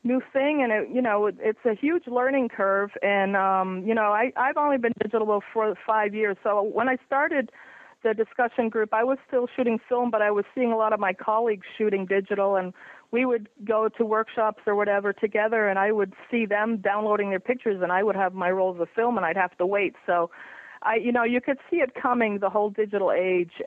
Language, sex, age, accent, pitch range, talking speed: English, female, 40-59, American, 175-215 Hz, 230 wpm